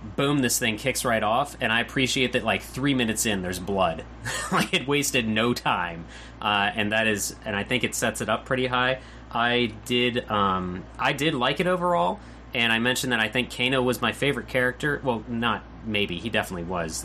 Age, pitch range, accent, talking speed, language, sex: 30-49, 105-130 Hz, American, 210 wpm, English, male